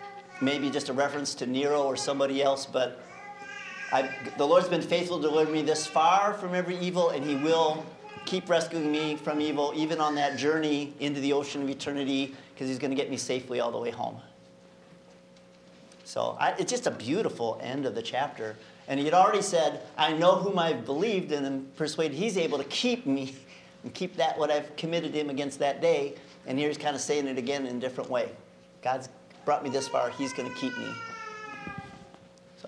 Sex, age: male, 40-59